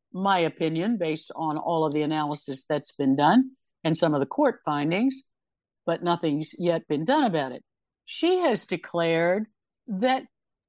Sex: female